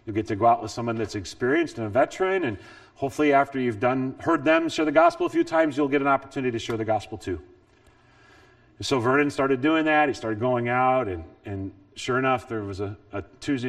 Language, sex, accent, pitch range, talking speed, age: English, male, American, 110-130 Hz, 230 wpm, 30-49